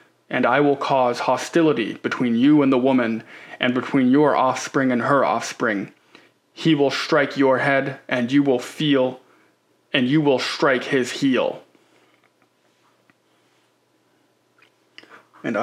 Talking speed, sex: 125 wpm, male